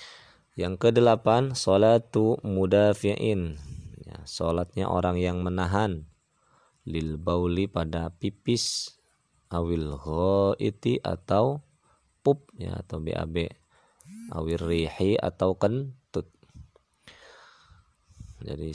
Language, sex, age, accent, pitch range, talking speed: Indonesian, male, 20-39, native, 80-100 Hz, 80 wpm